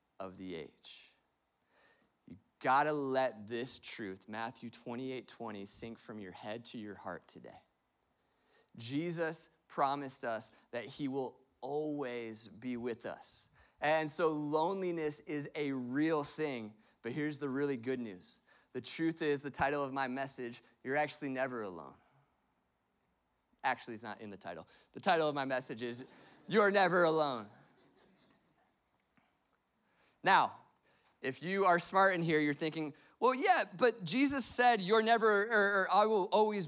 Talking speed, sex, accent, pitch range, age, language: 150 wpm, male, American, 135-225 Hz, 30-49, English